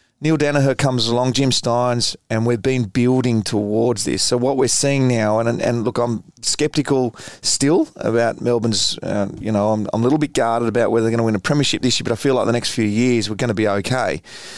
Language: English